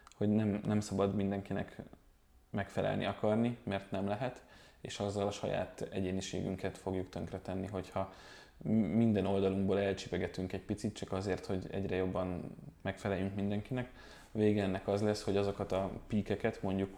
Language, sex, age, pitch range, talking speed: Hungarian, male, 20-39, 95-105 Hz, 135 wpm